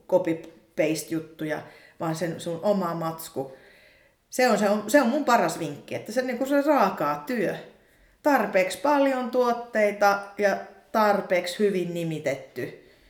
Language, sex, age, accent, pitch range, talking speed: Finnish, female, 30-49, native, 165-215 Hz, 130 wpm